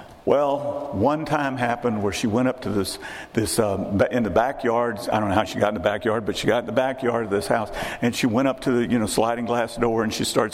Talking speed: 270 wpm